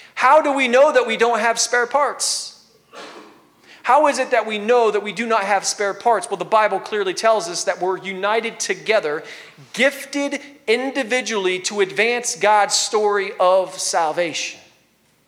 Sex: male